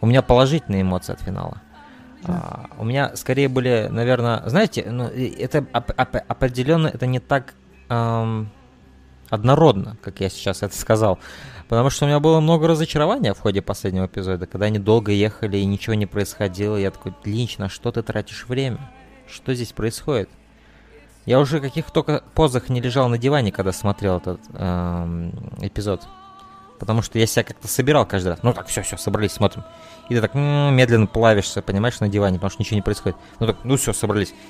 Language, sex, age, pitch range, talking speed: Russian, male, 20-39, 100-125 Hz, 180 wpm